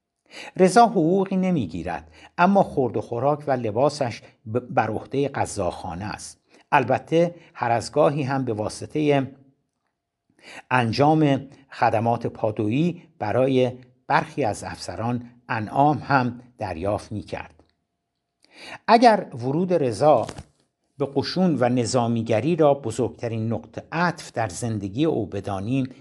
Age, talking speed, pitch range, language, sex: 60-79, 110 wpm, 110-145 Hz, Persian, male